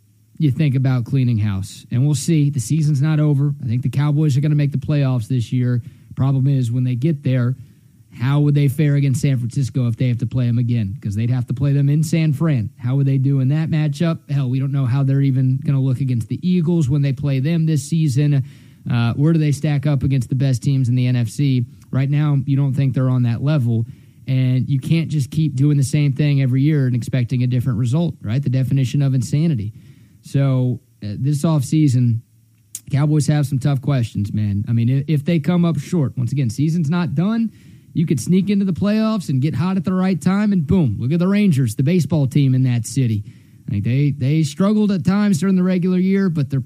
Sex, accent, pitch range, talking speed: male, American, 125-155 Hz, 230 wpm